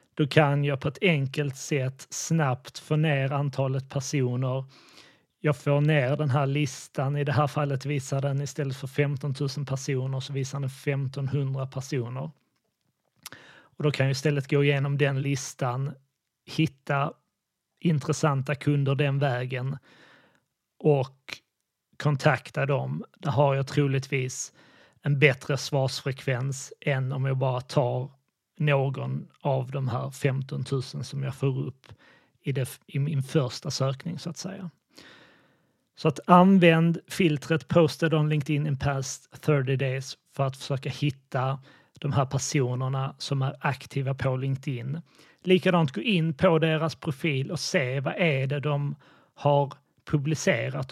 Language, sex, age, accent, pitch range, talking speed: Swedish, male, 30-49, native, 135-150 Hz, 140 wpm